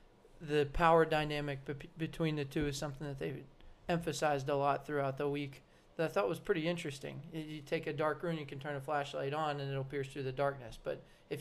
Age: 20-39